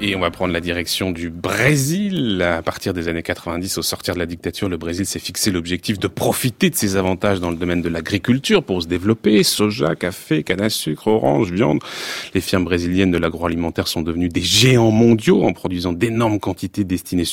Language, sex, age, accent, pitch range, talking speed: French, male, 30-49, French, 85-110 Hz, 200 wpm